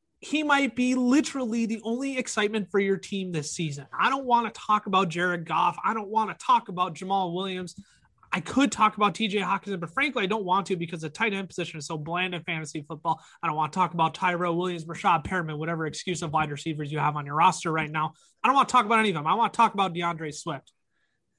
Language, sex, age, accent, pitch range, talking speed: English, male, 20-39, American, 140-195 Hz, 250 wpm